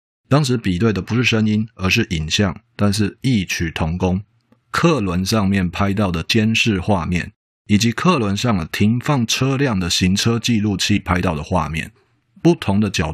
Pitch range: 90-115 Hz